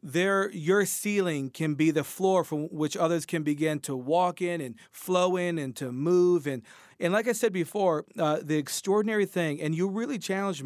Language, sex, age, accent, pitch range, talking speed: English, male, 40-59, American, 145-175 Hz, 190 wpm